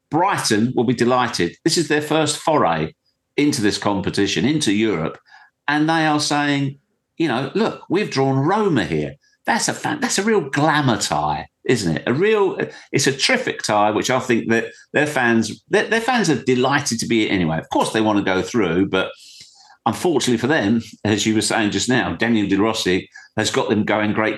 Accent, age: British, 50-69